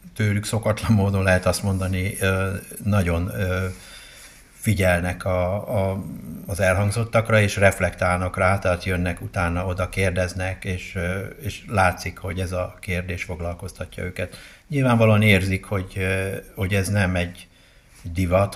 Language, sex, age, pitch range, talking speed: Hungarian, male, 60-79, 90-100 Hz, 115 wpm